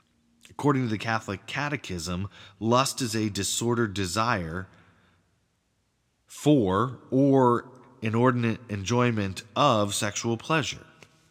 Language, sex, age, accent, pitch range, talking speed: English, male, 30-49, American, 90-120 Hz, 90 wpm